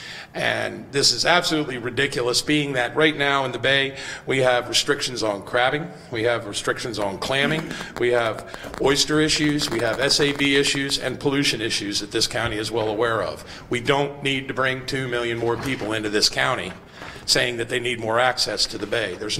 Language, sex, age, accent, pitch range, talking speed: English, male, 50-69, American, 120-150 Hz, 190 wpm